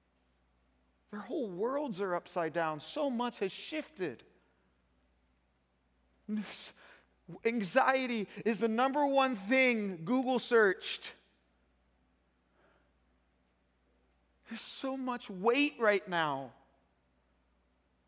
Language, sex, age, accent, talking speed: English, male, 40-59, American, 80 wpm